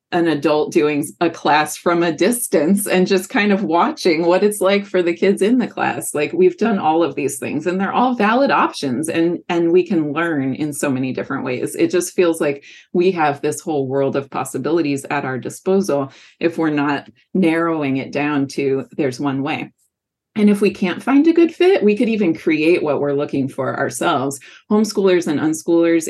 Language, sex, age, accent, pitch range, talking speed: English, female, 30-49, American, 140-185 Hz, 200 wpm